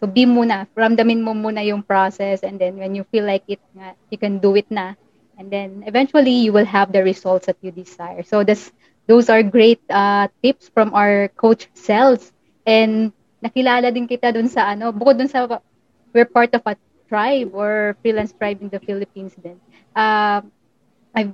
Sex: female